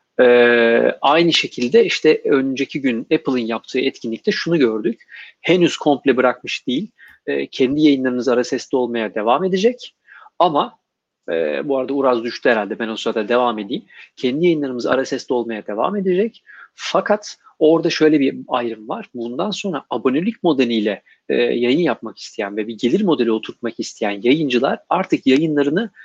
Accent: native